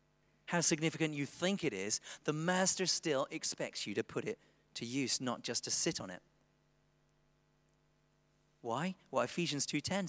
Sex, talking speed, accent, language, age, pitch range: male, 150 wpm, British, English, 40-59, 130-175 Hz